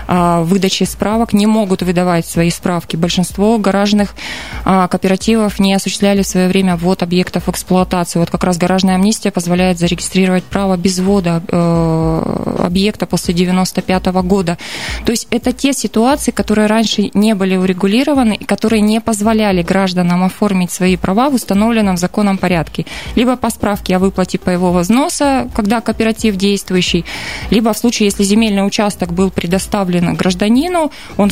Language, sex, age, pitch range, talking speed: Russian, female, 20-39, 185-215 Hz, 150 wpm